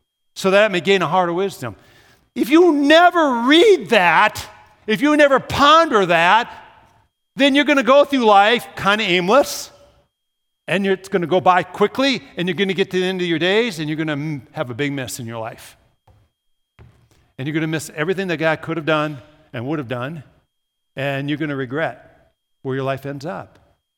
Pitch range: 150-195 Hz